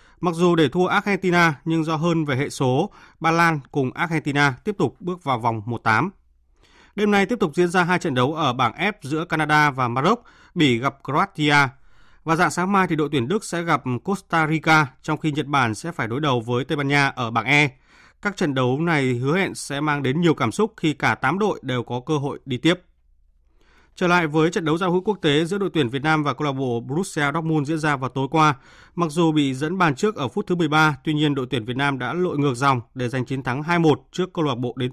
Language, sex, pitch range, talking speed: Vietnamese, male, 130-170 Hz, 245 wpm